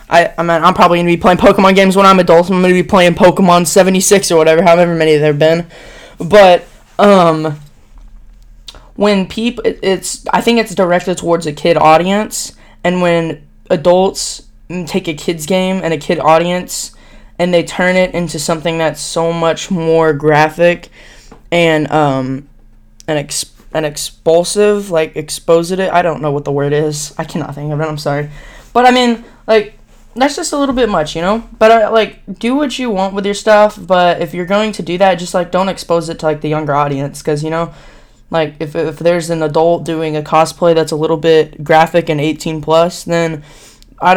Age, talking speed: 10-29, 200 wpm